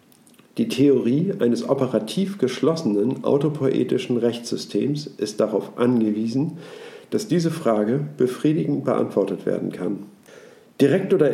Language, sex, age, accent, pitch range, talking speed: German, male, 50-69, German, 115-155 Hz, 100 wpm